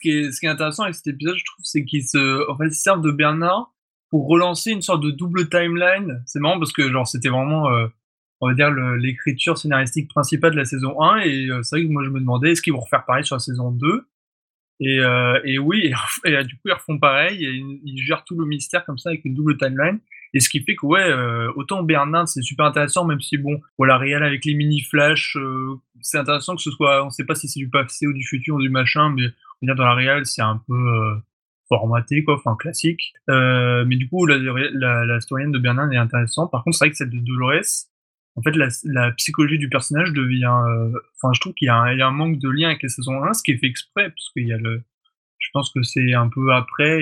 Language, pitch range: French, 125-150 Hz